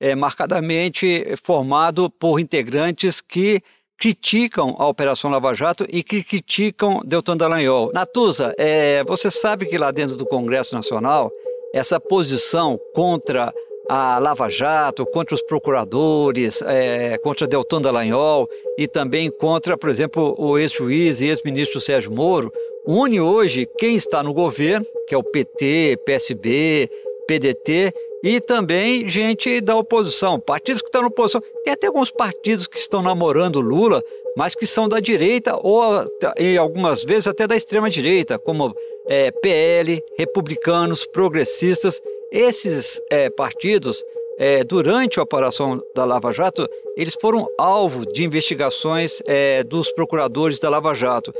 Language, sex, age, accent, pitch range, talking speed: Portuguese, male, 50-69, Brazilian, 155-240 Hz, 135 wpm